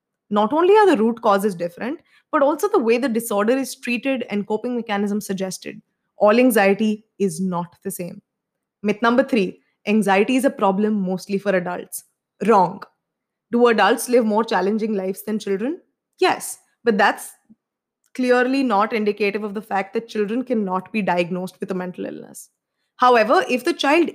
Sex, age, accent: female, 20-39, Indian